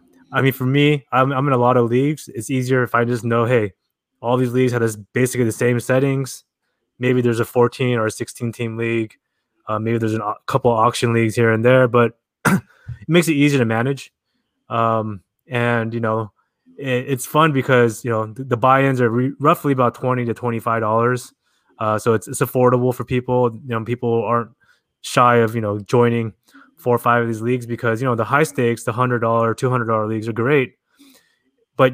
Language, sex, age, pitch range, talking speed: English, male, 20-39, 115-130 Hz, 210 wpm